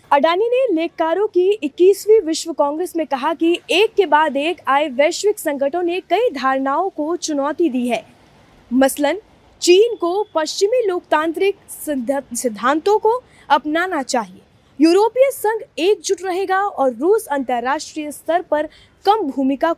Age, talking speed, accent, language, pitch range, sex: 20-39, 135 wpm, native, Hindi, 280-385 Hz, female